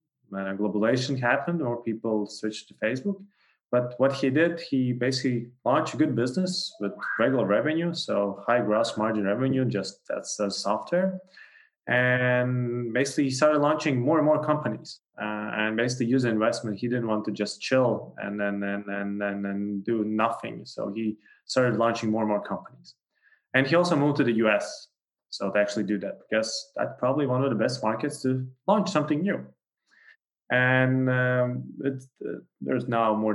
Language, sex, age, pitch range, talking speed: English, male, 20-39, 105-140 Hz, 175 wpm